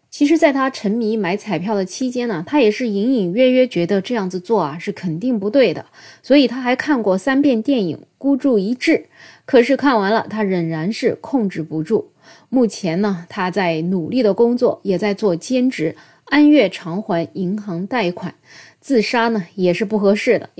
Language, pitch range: Chinese, 180-245 Hz